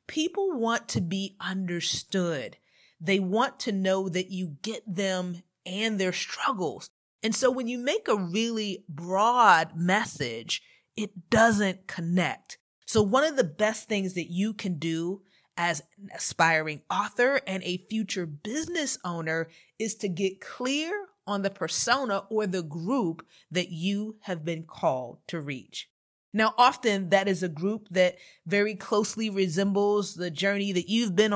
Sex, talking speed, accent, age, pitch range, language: female, 150 wpm, American, 30-49, 180-230 Hz, English